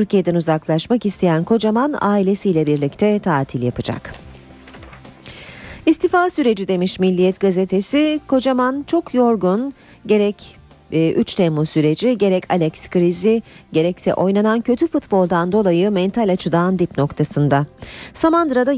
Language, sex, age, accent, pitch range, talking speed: Turkish, female, 40-59, native, 165-210 Hz, 110 wpm